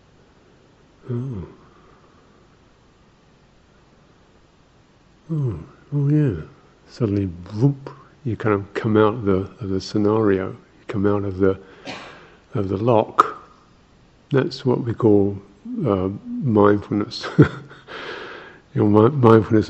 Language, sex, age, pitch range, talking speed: English, male, 50-69, 100-120 Hz, 105 wpm